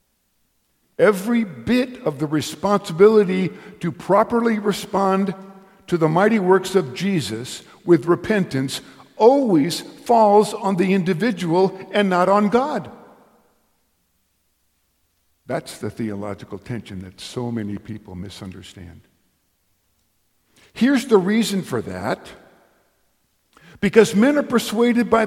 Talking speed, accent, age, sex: 105 wpm, American, 50-69, male